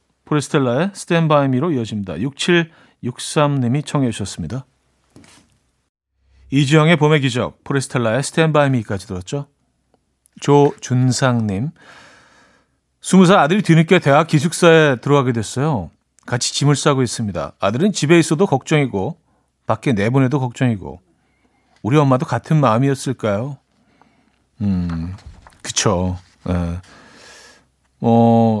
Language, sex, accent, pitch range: Korean, male, native, 115-150 Hz